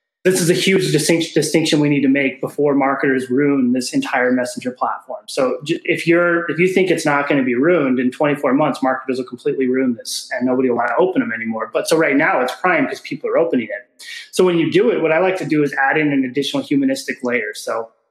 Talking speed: 250 wpm